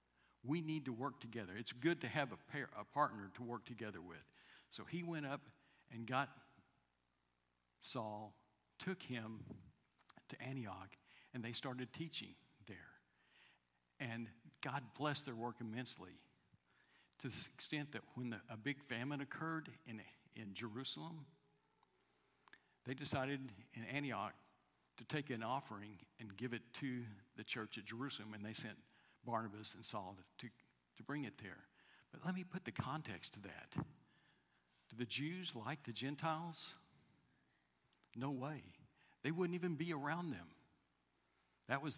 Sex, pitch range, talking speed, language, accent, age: male, 110-145 Hz, 145 wpm, English, American, 60-79